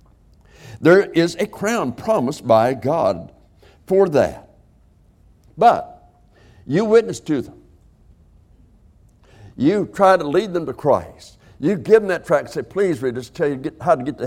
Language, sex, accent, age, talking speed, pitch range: English, male, American, 60-79, 155 wpm, 85-140 Hz